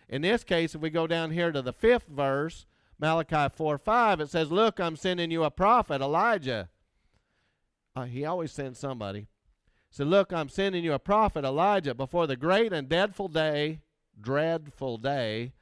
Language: English